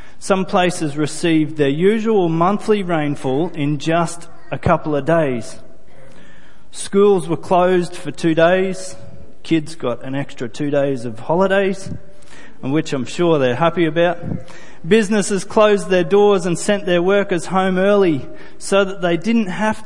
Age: 30-49